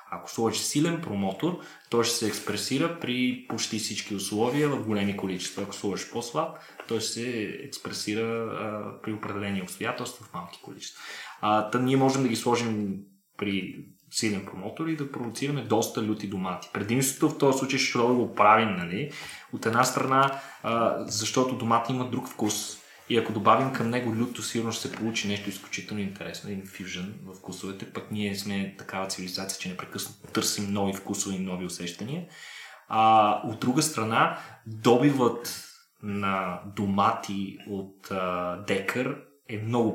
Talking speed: 155 wpm